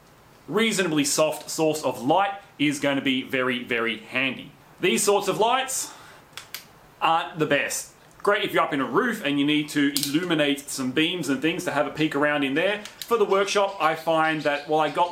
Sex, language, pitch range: male, English, 140-175 Hz